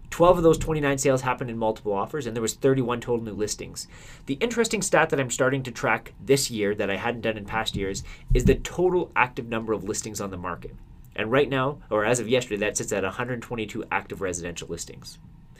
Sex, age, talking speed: male, 30-49, 220 wpm